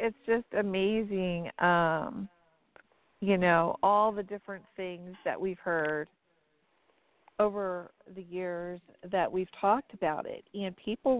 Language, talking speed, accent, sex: English, 125 wpm, American, female